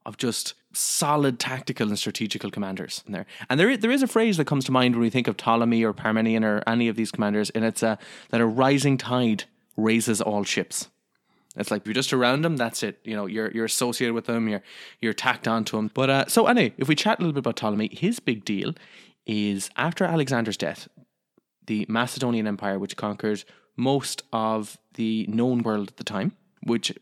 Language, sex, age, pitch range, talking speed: English, male, 20-39, 105-130 Hz, 215 wpm